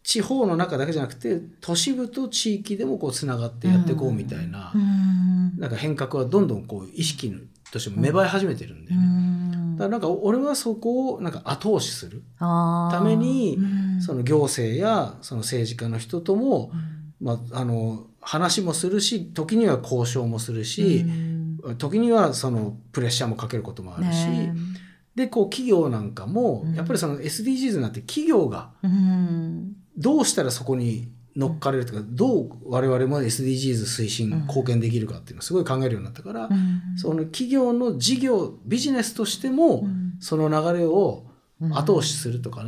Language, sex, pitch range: Japanese, male, 125-205 Hz